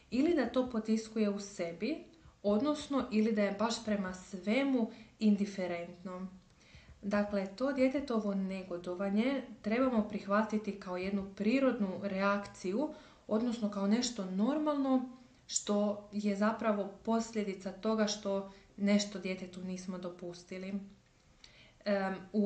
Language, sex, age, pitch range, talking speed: Croatian, female, 20-39, 185-215 Hz, 105 wpm